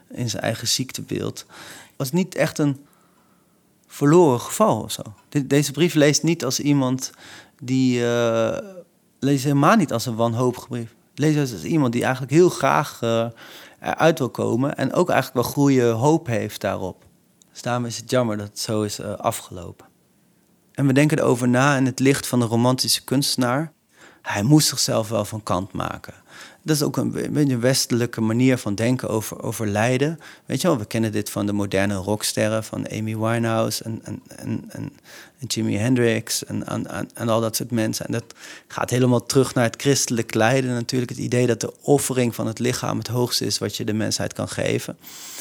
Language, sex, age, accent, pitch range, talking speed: Dutch, male, 30-49, Dutch, 115-140 Hz, 190 wpm